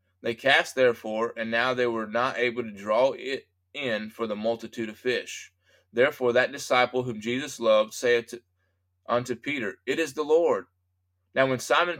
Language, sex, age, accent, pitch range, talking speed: English, male, 20-39, American, 100-125 Hz, 170 wpm